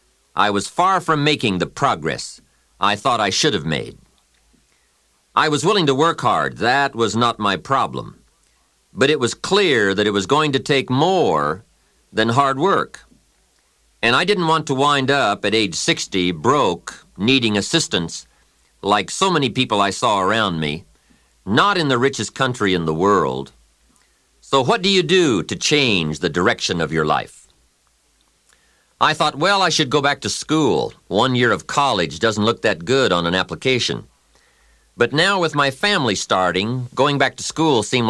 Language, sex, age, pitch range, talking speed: English, male, 50-69, 90-140 Hz, 175 wpm